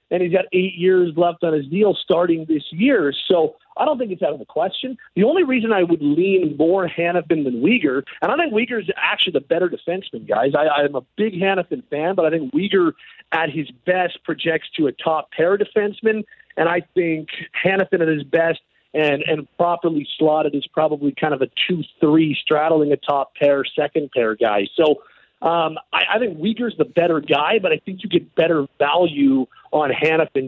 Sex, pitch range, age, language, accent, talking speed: male, 145-185 Hz, 40-59, English, American, 205 wpm